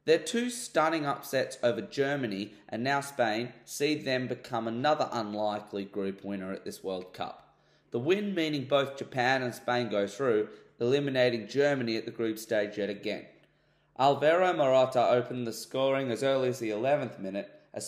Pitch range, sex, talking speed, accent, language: 110-140 Hz, male, 165 wpm, Australian, English